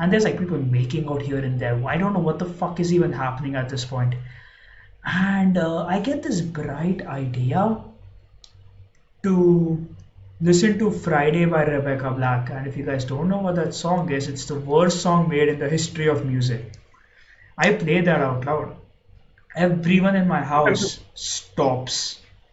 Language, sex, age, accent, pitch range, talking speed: English, male, 20-39, Indian, 130-170 Hz, 175 wpm